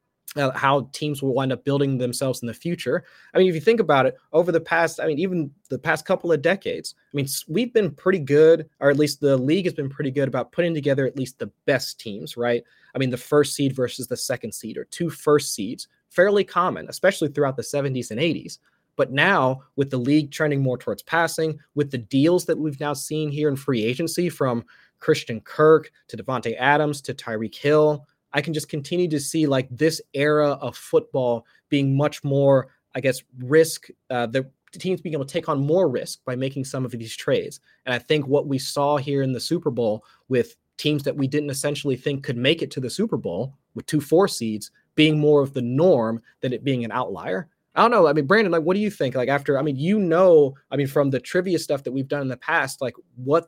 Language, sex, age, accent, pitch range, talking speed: English, male, 20-39, American, 130-160 Hz, 230 wpm